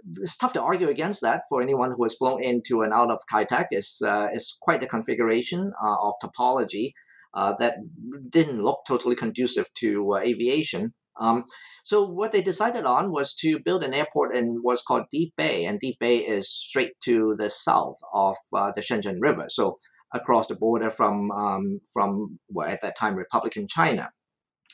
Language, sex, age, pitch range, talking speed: English, male, 50-69, 110-140 Hz, 185 wpm